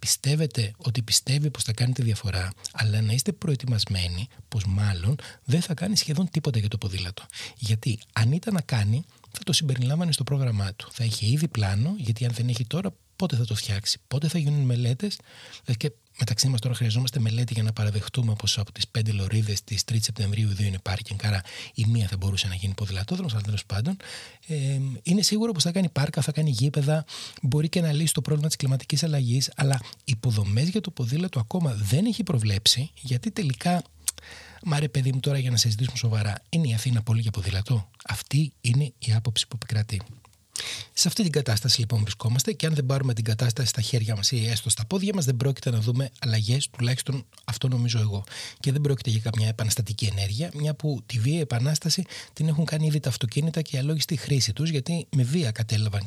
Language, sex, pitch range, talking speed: Greek, male, 110-145 Hz, 200 wpm